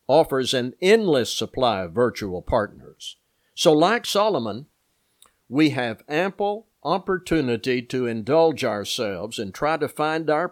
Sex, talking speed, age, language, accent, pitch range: male, 125 wpm, 60-79, English, American, 120-155 Hz